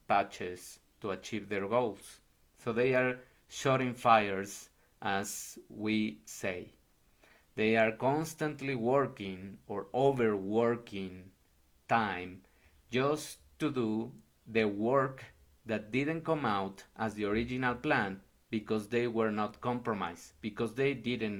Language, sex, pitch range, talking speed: English, male, 95-125 Hz, 115 wpm